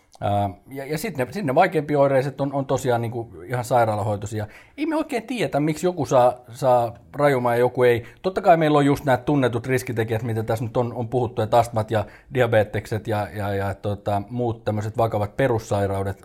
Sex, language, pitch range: male, Finnish, 110-140 Hz